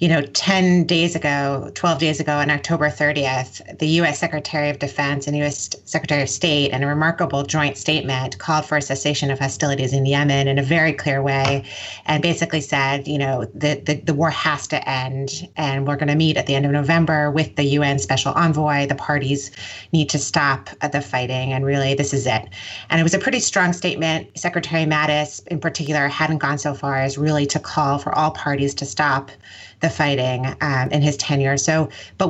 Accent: American